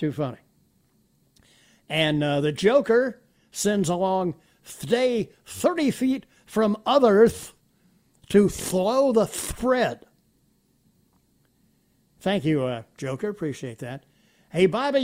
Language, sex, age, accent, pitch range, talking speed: English, male, 60-79, American, 160-230 Hz, 110 wpm